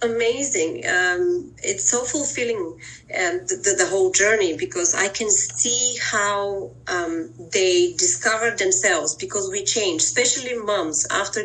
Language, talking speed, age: English, 140 wpm, 30-49